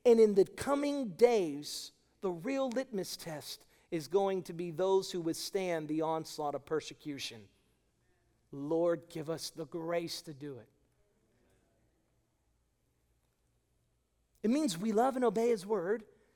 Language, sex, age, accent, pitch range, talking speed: English, male, 40-59, American, 170-245 Hz, 130 wpm